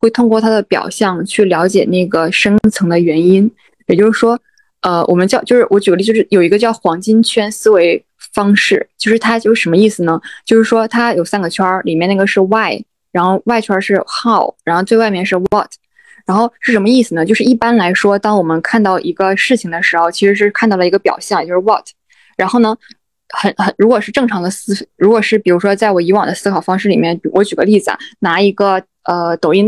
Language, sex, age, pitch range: Chinese, female, 20-39, 185-225 Hz